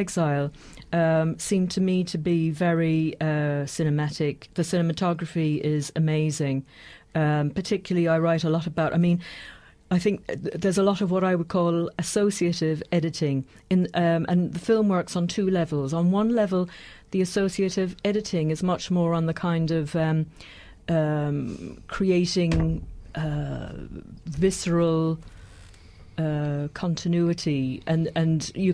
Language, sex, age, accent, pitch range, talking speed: English, female, 40-59, British, 155-180 Hz, 135 wpm